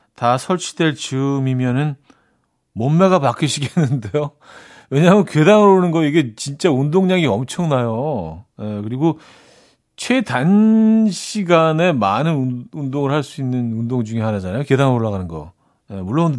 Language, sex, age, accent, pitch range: Korean, male, 40-59, native, 120-165 Hz